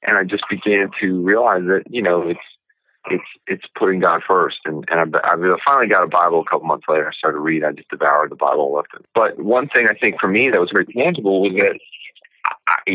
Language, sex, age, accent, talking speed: English, male, 40-59, American, 245 wpm